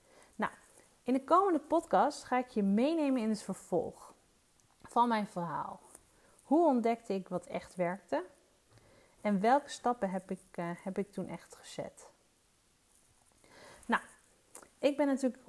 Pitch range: 195-260 Hz